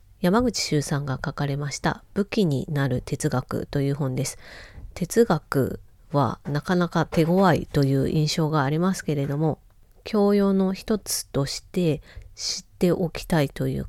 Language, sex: Japanese, female